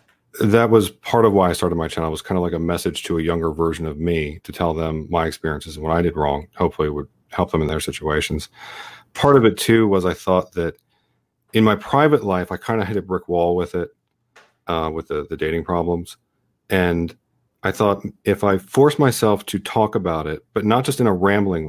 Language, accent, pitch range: English, American, 85-105 Hz